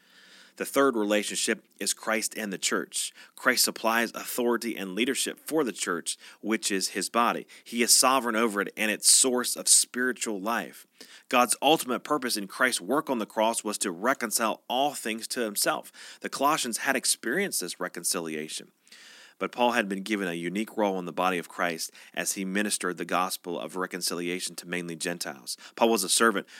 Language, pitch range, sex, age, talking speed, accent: English, 90-110 Hz, male, 30-49, 180 wpm, American